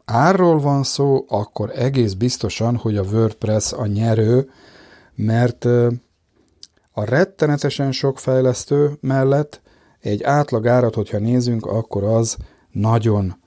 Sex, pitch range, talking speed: male, 105-130 Hz, 110 wpm